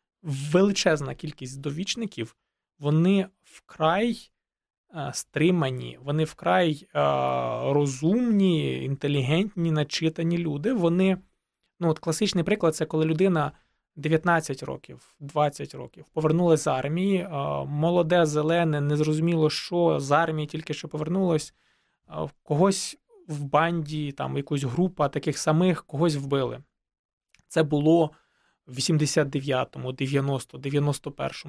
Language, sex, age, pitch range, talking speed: Ukrainian, male, 20-39, 145-180 Hz, 95 wpm